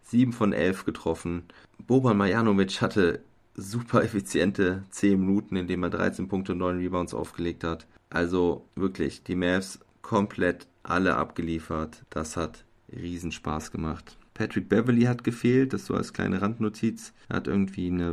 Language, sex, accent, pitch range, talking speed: German, male, German, 90-105 Hz, 150 wpm